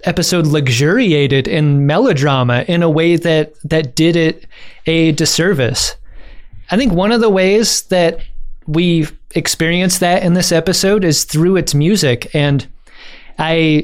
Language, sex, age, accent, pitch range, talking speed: English, male, 20-39, American, 150-180 Hz, 140 wpm